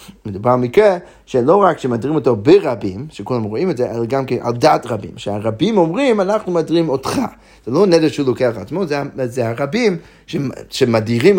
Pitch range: 115-170 Hz